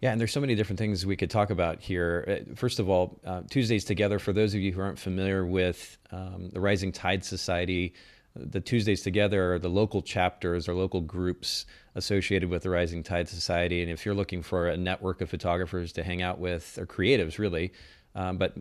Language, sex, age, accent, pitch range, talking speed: English, male, 30-49, American, 90-100 Hz, 210 wpm